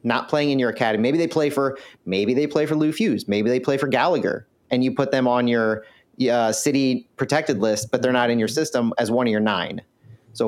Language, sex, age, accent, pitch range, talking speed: English, male, 30-49, American, 115-150 Hz, 240 wpm